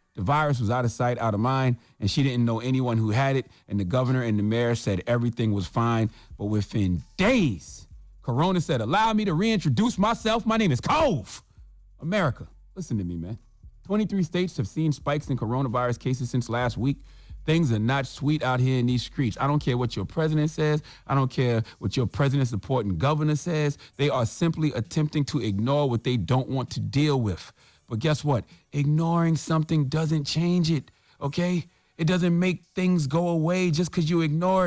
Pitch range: 120-160 Hz